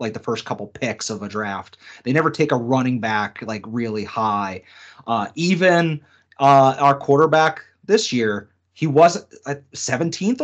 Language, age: English, 30-49